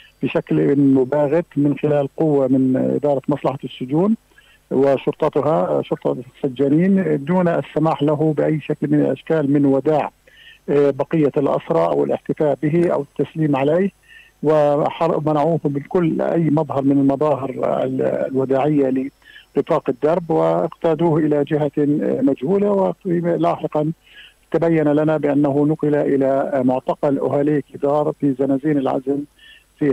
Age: 50-69